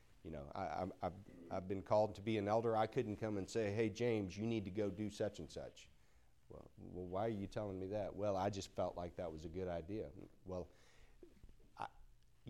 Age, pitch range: 50-69, 85-110 Hz